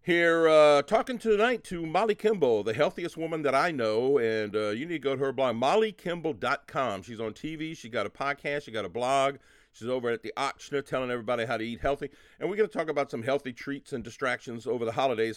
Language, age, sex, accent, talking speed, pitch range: English, 50-69, male, American, 230 wpm, 130-195 Hz